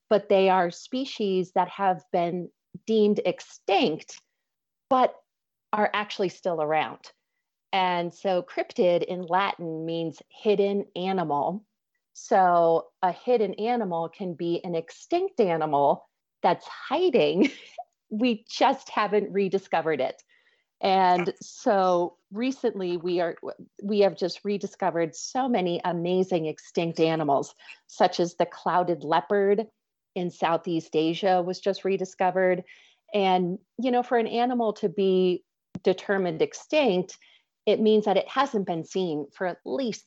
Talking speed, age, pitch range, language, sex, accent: 125 wpm, 30-49, 175-215 Hz, English, female, American